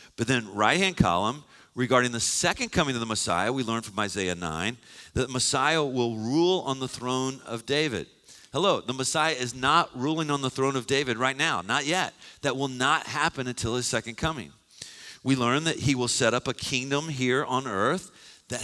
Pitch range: 105-135 Hz